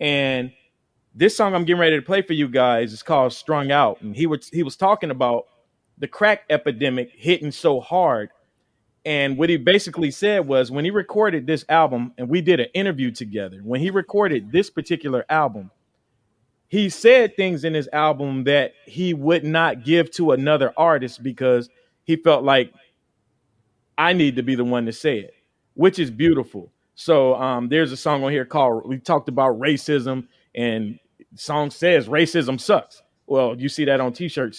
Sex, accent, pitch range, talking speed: male, American, 130-170 Hz, 180 wpm